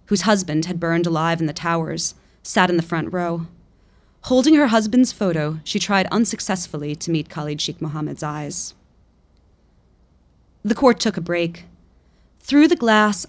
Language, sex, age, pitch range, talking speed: English, female, 20-39, 160-200 Hz, 155 wpm